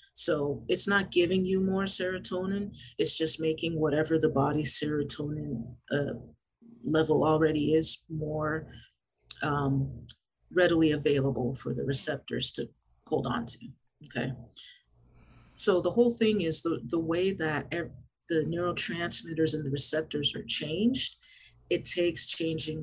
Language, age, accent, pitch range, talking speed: English, 40-59, American, 135-170 Hz, 130 wpm